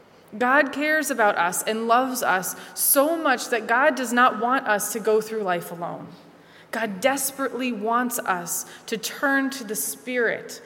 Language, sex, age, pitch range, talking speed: English, female, 20-39, 195-240 Hz, 165 wpm